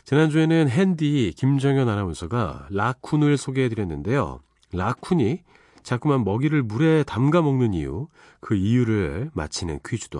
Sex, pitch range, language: male, 95-150 Hz, Korean